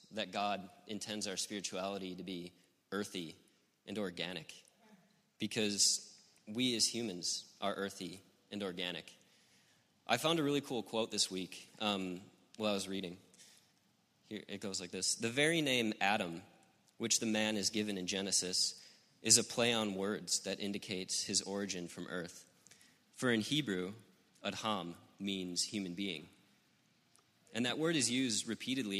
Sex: male